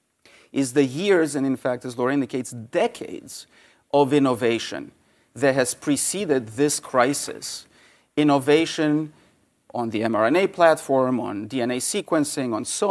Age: 40-59